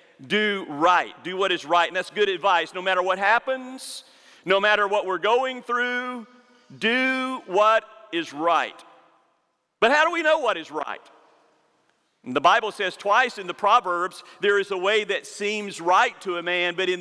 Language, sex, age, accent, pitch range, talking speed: English, male, 50-69, American, 185-240 Hz, 180 wpm